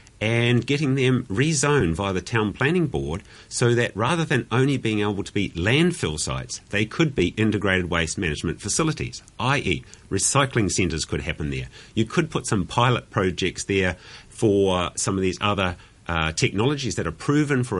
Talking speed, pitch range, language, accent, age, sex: 170 wpm, 95-120 Hz, English, Australian, 50-69, male